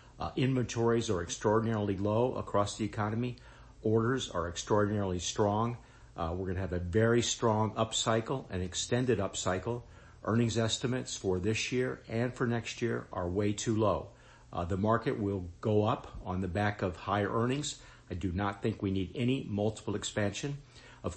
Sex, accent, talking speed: male, American, 165 wpm